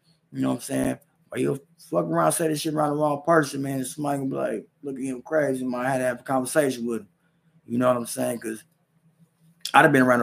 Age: 20-39